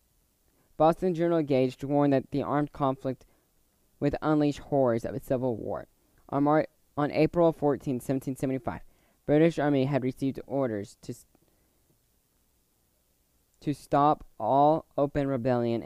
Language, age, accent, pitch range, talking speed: English, 10-29, American, 115-150 Hz, 125 wpm